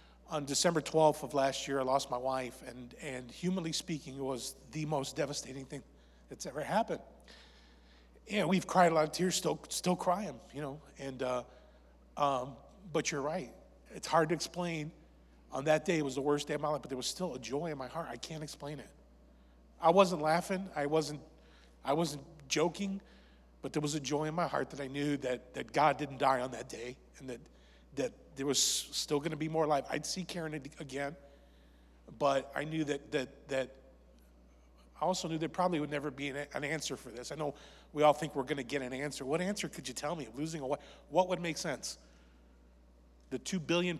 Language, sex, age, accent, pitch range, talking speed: English, male, 40-59, American, 125-160 Hz, 215 wpm